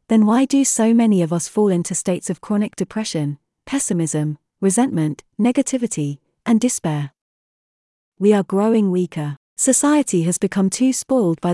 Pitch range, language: 170-225 Hz, English